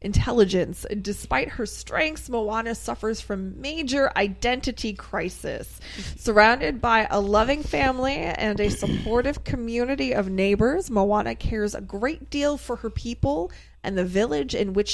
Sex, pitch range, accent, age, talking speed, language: female, 190-250 Hz, American, 20-39, 135 wpm, English